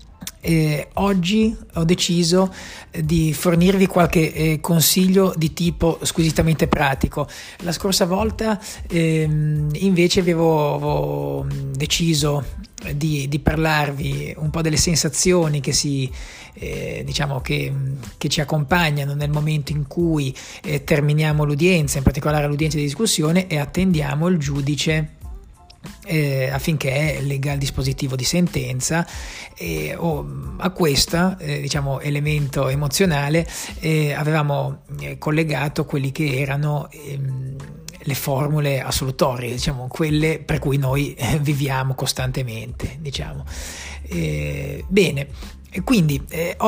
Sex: male